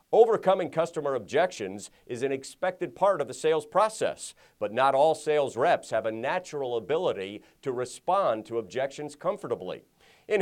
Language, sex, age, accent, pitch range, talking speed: English, male, 50-69, American, 125-170 Hz, 150 wpm